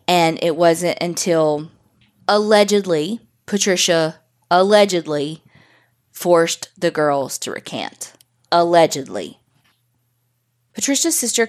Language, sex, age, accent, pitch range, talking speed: English, female, 20-39, American, 150-190 Hz, 80 wpm